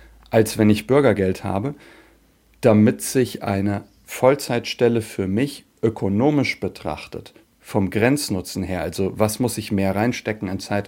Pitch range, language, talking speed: 105-125 Hz, German, 130 wpm